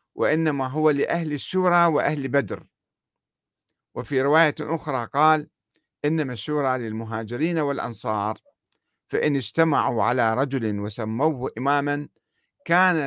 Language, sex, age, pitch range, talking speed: Arabic, male, 50-69, 120-165 Hz, 95 wpm